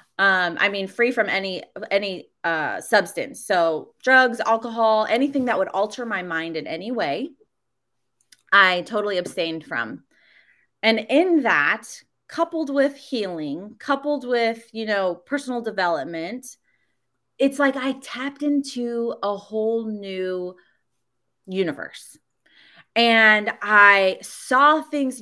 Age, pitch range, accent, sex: 30-49, 190-255 Hz, American, female